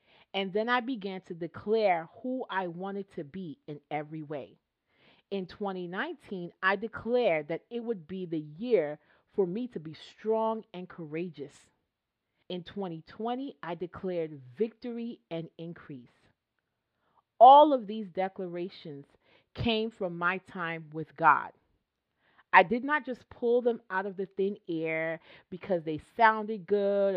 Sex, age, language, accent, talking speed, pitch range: female, 40-59, English, American, 140 wpm, 160-215 Hz